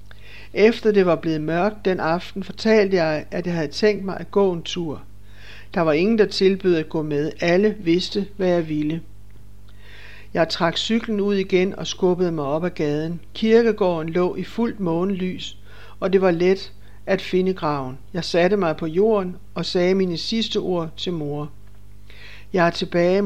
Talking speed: 180 wpm